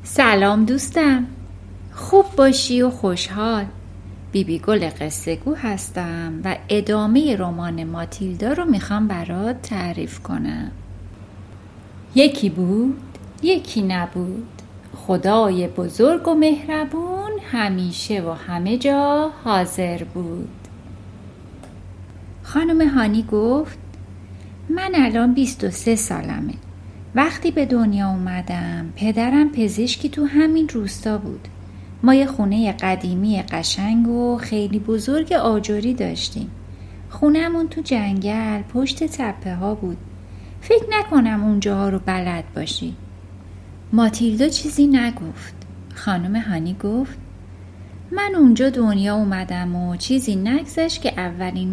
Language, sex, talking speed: Persian, female, 105 wpm